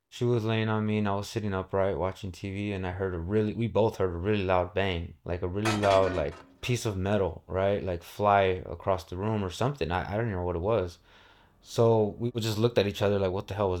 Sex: male